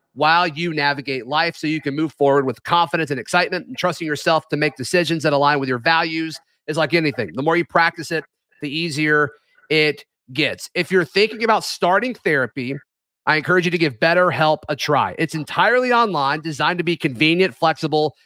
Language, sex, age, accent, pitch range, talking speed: English, male, 30-49, American, 155-200 Hz, 190 wpm